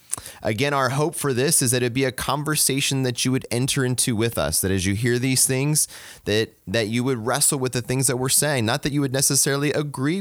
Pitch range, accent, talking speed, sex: 105-140 Hz, American, 240 wpm, male